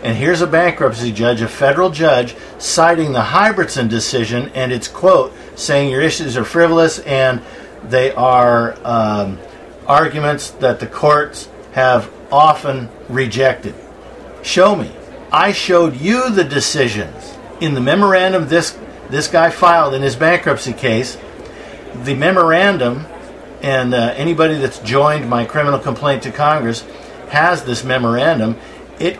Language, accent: English, American